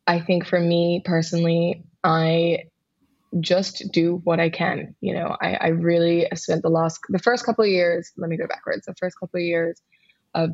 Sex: female